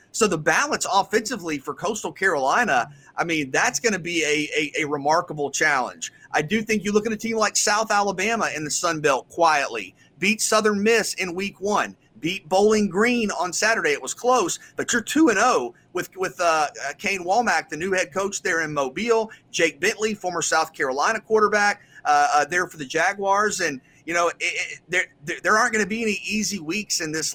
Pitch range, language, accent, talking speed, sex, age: 160-215 Hz, English, American, 200 wpm, male, 30-49